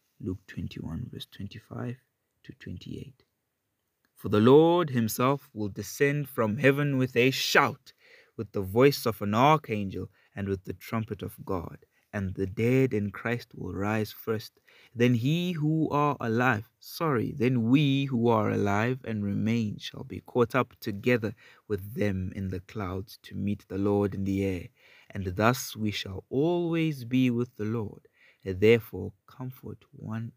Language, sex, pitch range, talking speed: English, male, 105-130 Hz, 155 wpm